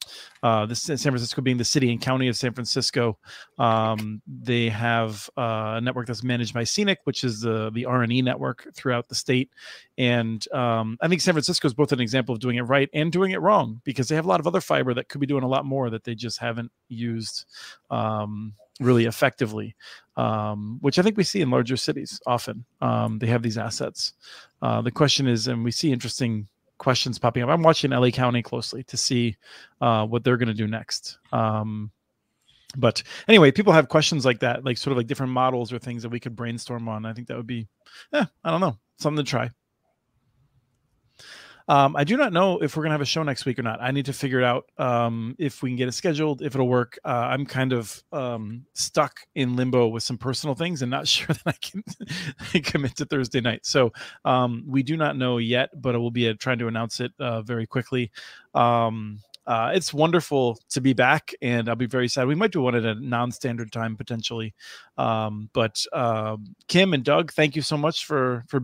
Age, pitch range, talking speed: 30-49, 115-140 Hz, 220 wpm